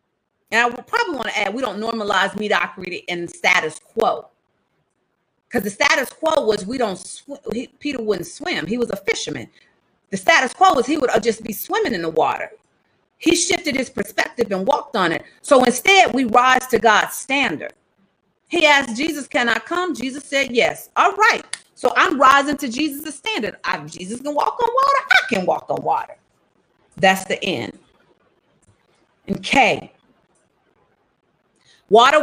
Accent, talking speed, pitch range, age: American, 170 wpm, 210-310 Hz, 40-59